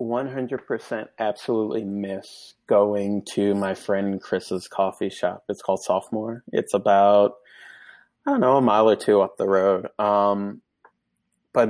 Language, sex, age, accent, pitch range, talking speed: English, male, 20-39, American, 100-120 Hz, 140 wpm